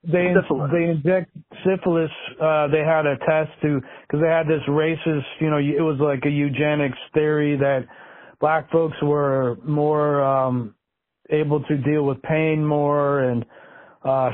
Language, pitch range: English, 140-165 Hz